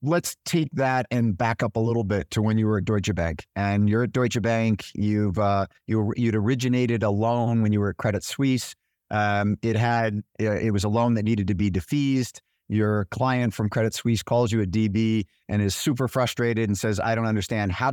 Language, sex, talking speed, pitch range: English, male, 220 wpm, 100-120 Hz